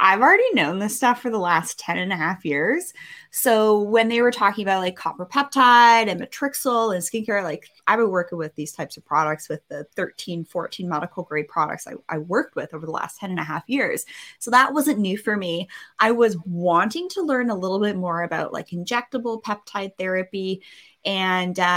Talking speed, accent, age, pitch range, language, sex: 205 wpm, American, 20-39, 180-225 Hz, English, female